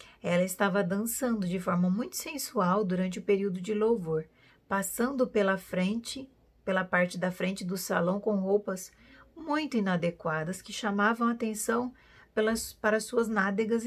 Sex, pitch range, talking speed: female, 185-230 Hz, 140 wpm